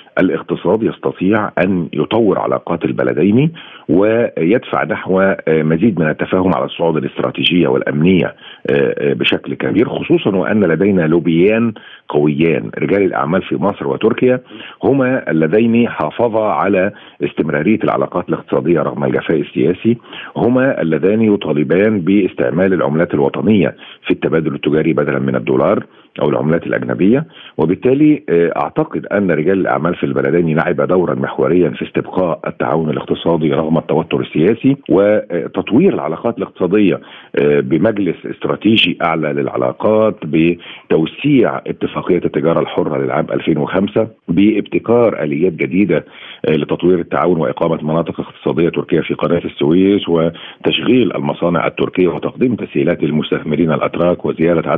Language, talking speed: Arabic, 110 wpm